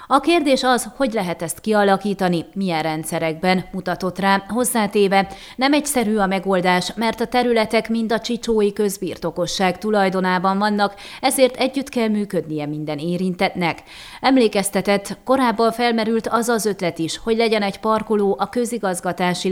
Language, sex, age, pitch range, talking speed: Hungarian, female, 30-49, 180-220 Hz, 135 wpm